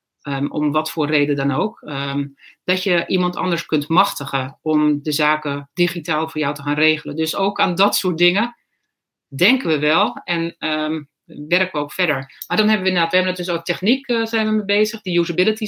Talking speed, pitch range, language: 220 wpm, 155-205 Hz, Dutch